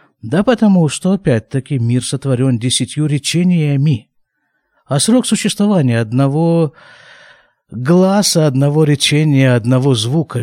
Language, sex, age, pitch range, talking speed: Russian, male, 50-69, 130-180 Hz, 100 wpm